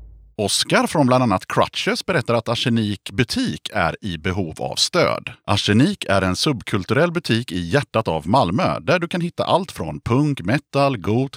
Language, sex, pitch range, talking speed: Swedish, male, 100-145 Hz, 170 wpm